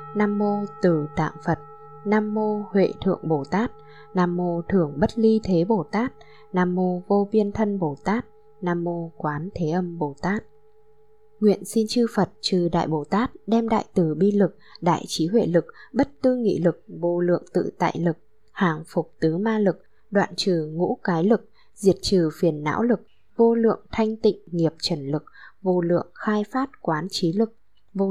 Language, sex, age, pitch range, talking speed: Vietnamese, female, 10-29, 170-215 Hz, 190 wpm